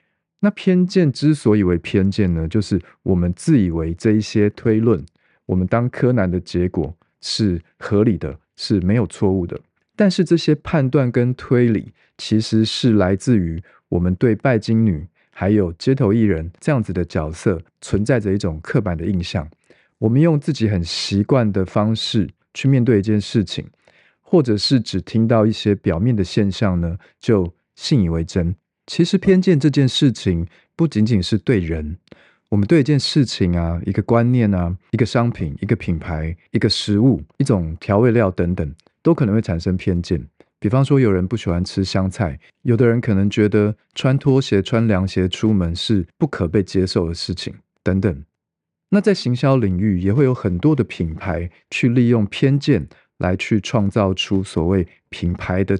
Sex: male